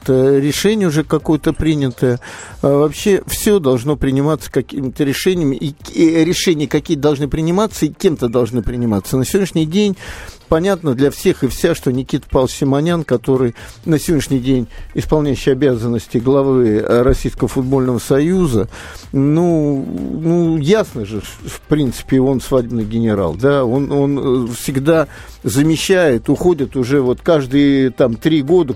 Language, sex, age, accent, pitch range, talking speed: Russian, male, 50-69, native, 125-155 Hz, 130 wpm